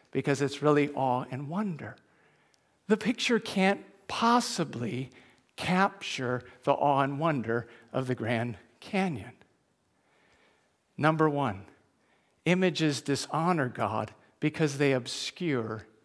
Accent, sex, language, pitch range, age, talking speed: American, male, English, 155-220 Hz, 50-69, 100 wpm